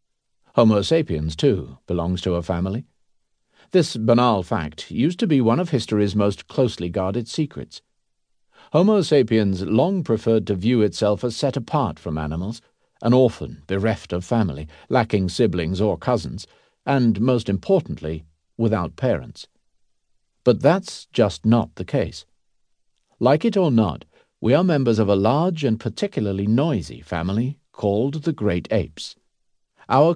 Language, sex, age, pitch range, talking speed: English, male, 50-69, 95-135 Hz, 140 wpm